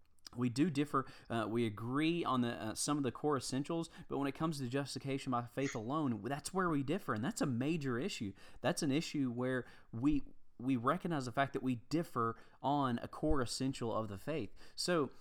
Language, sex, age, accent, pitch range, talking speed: English, male, 30-49, American, 115-150 Hz, 200 wpm